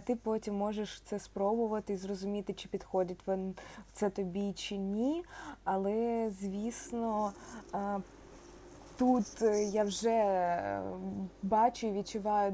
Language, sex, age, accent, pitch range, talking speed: Ukrainian, female, 20-39, native, 185-220 Hz, 115 wpm